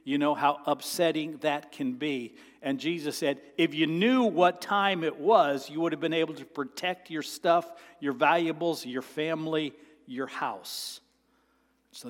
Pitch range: 145-200 Hz